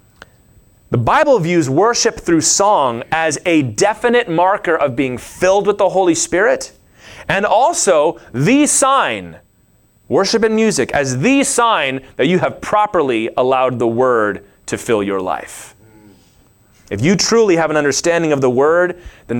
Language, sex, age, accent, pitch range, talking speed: English, male, 30-49, American, 160-225 Hz, 150 wpm